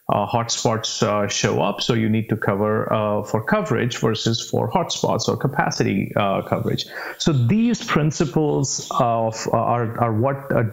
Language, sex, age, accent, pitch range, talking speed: English, male, 30-49, Indian, 110-130 Hz, 160 wpm